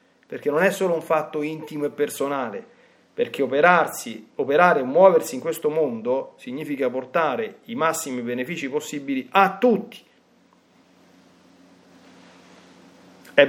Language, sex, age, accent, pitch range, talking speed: Italian, male, 40-59, native, 145-220 Hz, 115 wpm